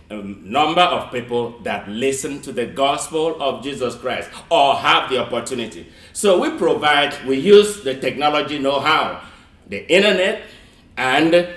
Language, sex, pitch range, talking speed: English, male, 115-175 Hz, 140 wpm